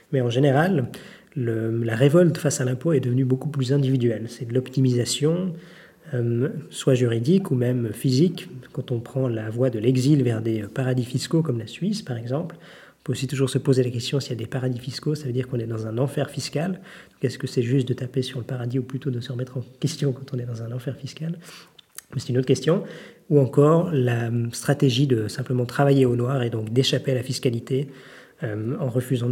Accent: French